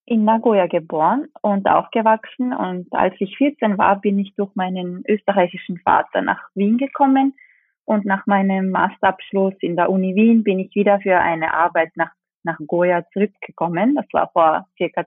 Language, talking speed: German, 160 wpm